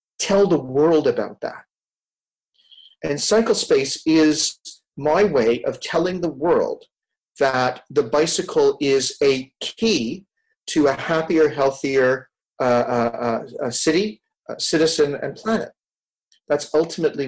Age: 40-59